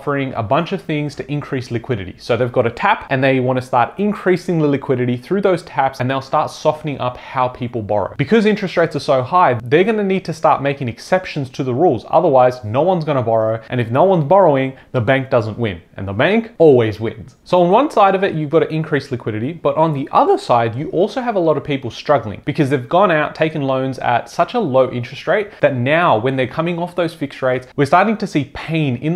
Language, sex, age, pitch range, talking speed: English, male, 30-49, 125-165 Hz, 245 wpm